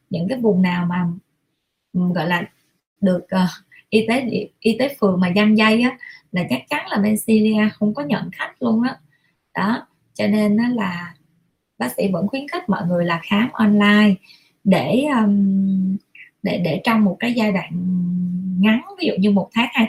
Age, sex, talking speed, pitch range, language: 20-39, female, 190 wpm, 185-230 Hz, Vietnamese